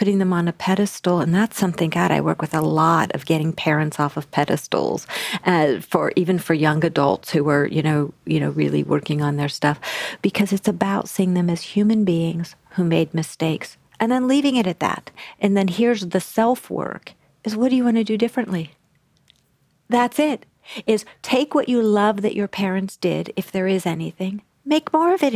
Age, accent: 50-69, American